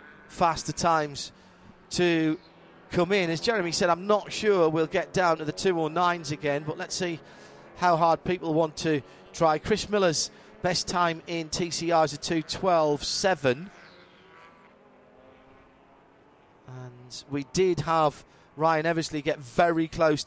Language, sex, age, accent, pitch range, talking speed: English, male, 40-59, British, 135-165 Hz, 140 wpm